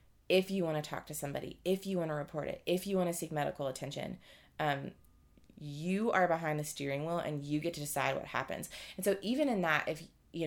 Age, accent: 20-39, American